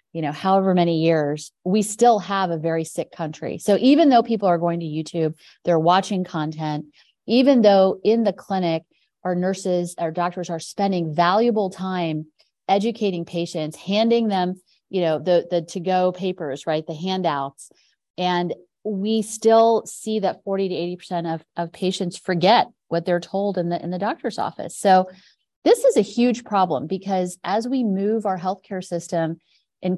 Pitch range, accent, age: 165-205 Hz, American, 30-49